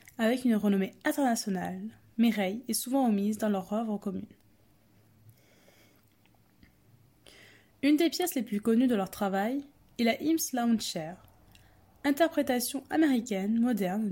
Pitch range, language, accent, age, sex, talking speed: 185-255 Hz, French, French, 20-39, female, 120 wpm